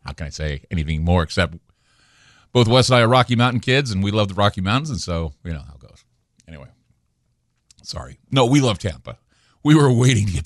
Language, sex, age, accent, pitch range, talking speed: English, male, 50-69, American, 85-115 Hz, 225 wpm